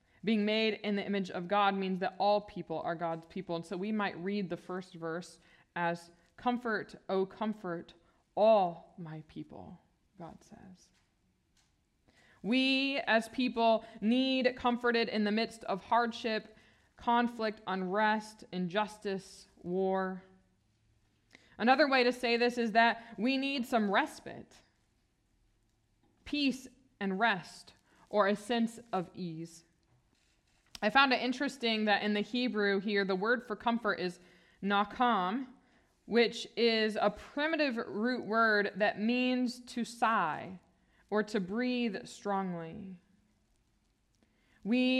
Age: 20-39